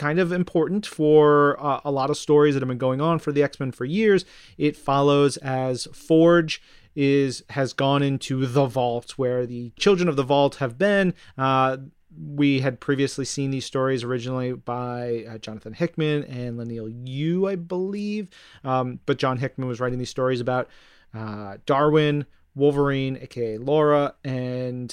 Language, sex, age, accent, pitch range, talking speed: English, male, 30-49, American, 130-150 Hz, 165 wpm